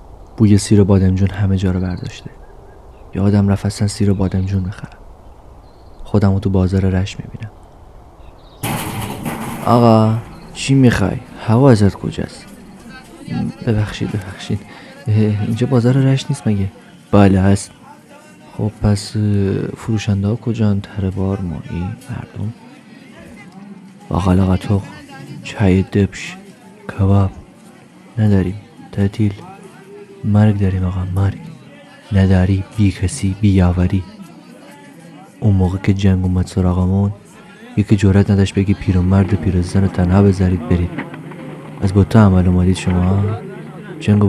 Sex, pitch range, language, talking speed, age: male, 95-115 Hz, Persian, 110 wpm, 30-49